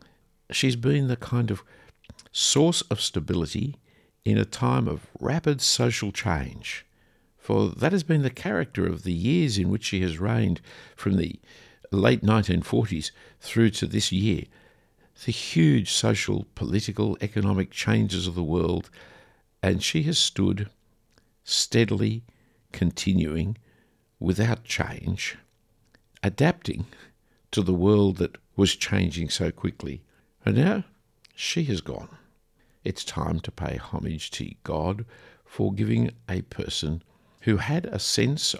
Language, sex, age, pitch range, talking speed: English, male, 60-79, 90-115 Hz, 130 wpm